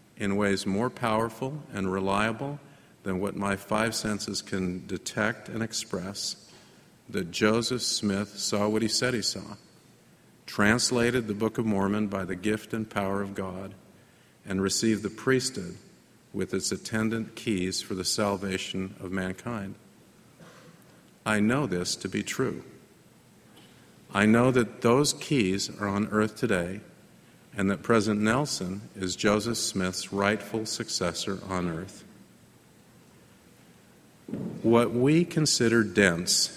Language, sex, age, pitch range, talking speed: English, male, 50-69, 95-115 Hz, 130 wpm